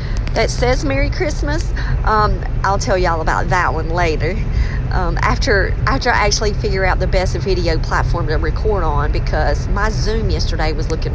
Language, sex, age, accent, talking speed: English, female, 40-59, American, 170 wpm